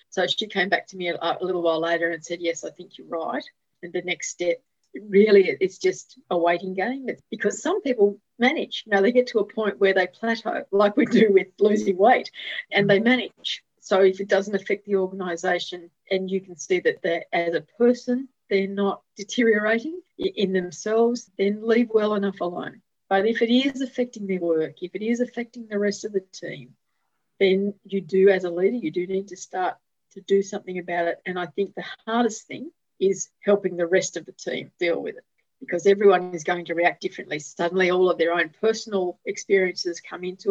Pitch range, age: 180-225 Hz, 40-59